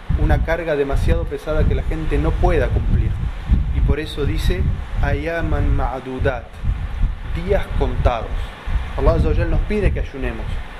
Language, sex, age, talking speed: Spanish, male, 20-39, 130 wpm